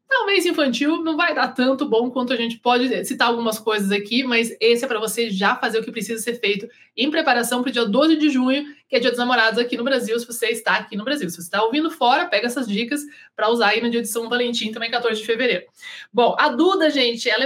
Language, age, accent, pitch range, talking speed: Portuguese, 20-39, Brazilian, 225-280 Hz, 255 wpm